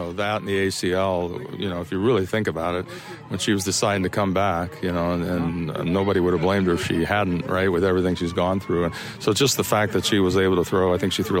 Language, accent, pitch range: English, American, 90-105 Hz